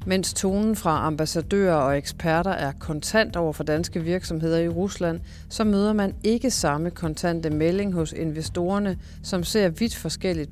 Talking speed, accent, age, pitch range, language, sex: 155 wpm, native, 40-59, 150-190 Hz, Danish, female